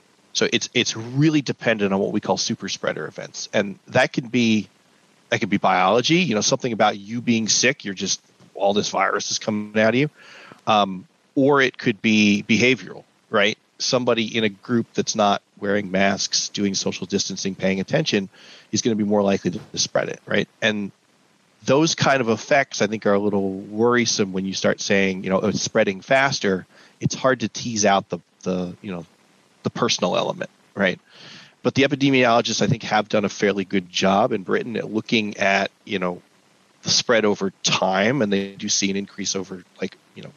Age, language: 30-49, English